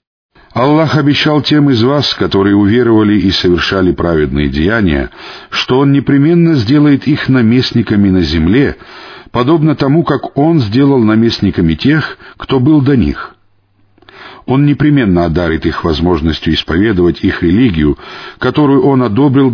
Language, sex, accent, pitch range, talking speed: Russian, male, native, 95-130 Hz, 125 wpm